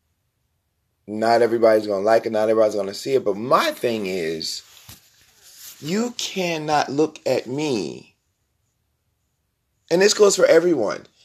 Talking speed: 140 wpm